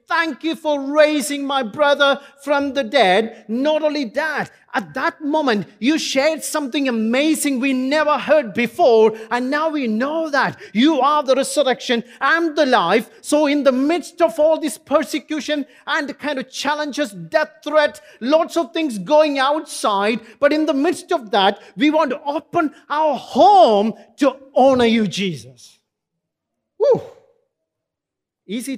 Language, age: English, 40-59